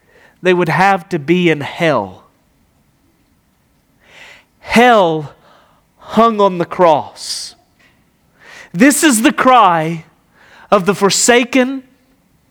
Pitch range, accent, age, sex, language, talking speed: 160-205 Hz, American, 40-59, male, English, 90 wpm